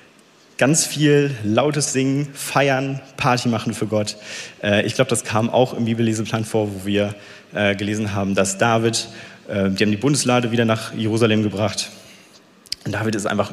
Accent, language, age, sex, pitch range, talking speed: German, German, 30-49, male, 105-130 Hz, 165 wpm